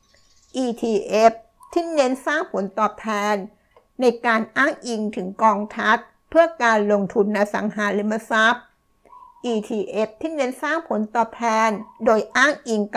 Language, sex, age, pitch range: Thai, female, 60-79, 210-245 Hz